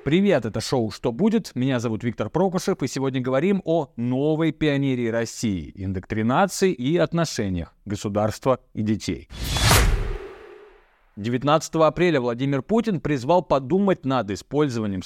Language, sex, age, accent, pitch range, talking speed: Russian, male, 30-49, native, 115-165 Hz, 120 wpm